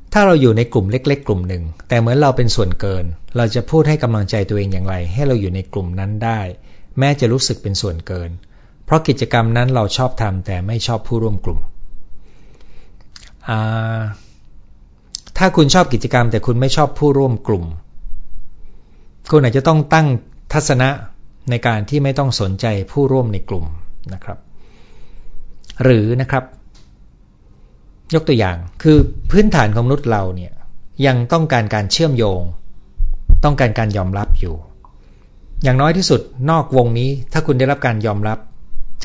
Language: Thai